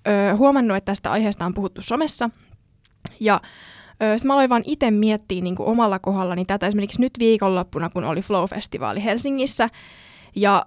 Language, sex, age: Finnish, female, 20-39